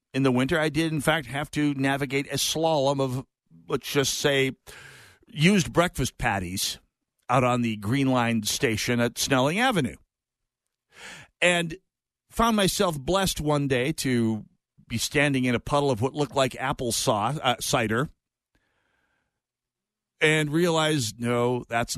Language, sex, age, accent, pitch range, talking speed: English, male, 50-69, American, 110-150 Hz, 140 wpm